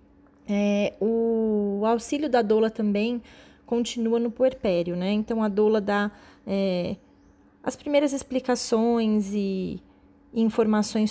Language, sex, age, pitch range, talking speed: Portuguese, female, 20-39, 195-230 Hz, 110 wpm